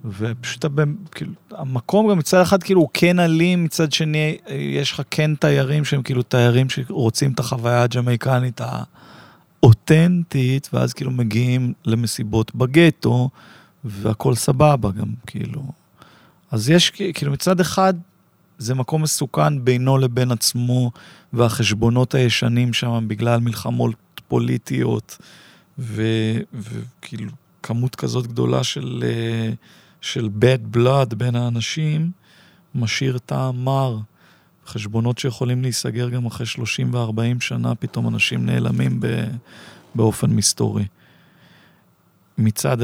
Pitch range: 115-150 Hz